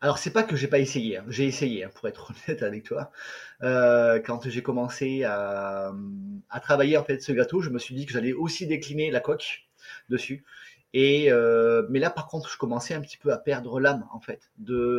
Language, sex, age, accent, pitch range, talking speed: French, male, 30-49, French, 125-170 Hz, 220 wpm